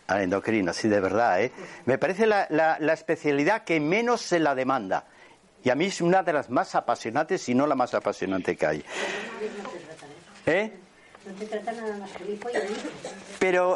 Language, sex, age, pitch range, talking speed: Spanish, male, 50-69, 130-195 Hz, 155 wpm